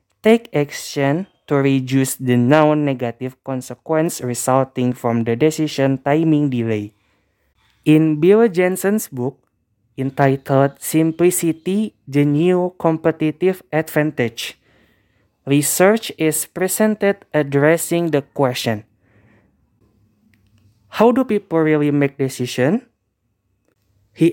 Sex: male